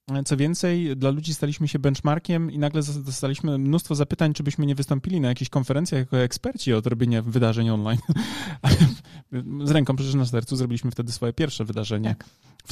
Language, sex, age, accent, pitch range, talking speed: Polish, male, 20-39, native, 120-145 Hz, 175 wpm